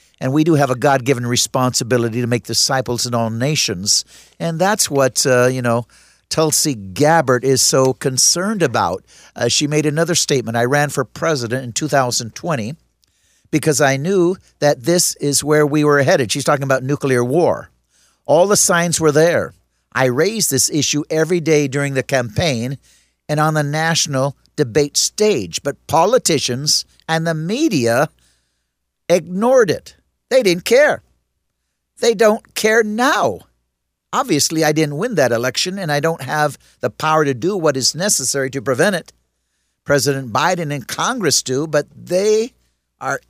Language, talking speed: English, 155 wpm